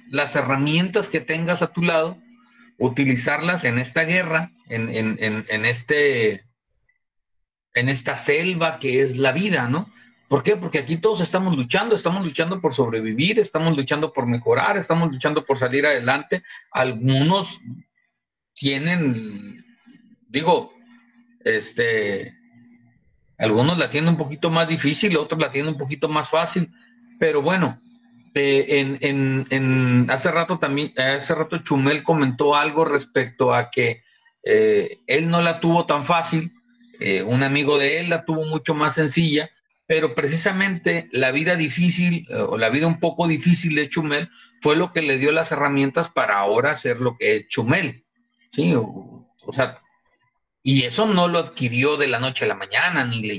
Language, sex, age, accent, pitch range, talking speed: Spanish, male, 40-59, Mexican, 140-180 Hz, 160 wpm